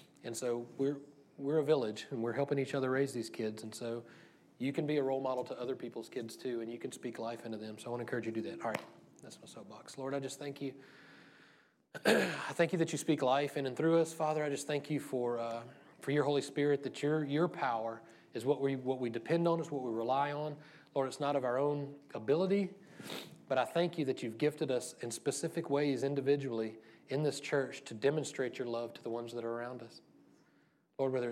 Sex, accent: male, American